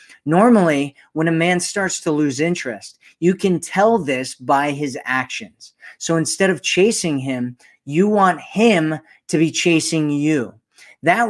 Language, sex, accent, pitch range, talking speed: English, male, American, 145-175 Hz, 150 wpm